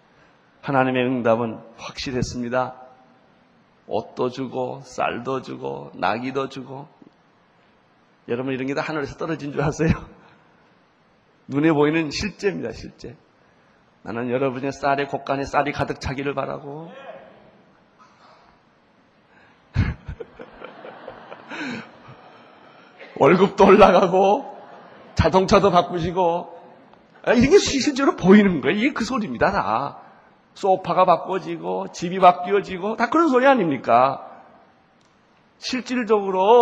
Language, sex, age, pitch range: Korean, male, 30-49, 140-220 Hz